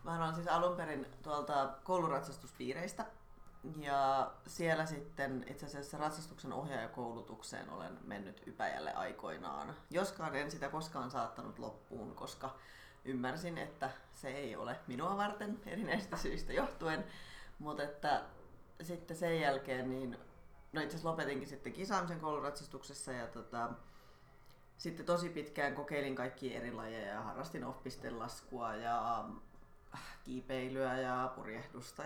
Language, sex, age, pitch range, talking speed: Finnish, female, 30-49, 130-165 Hz, 120 wpm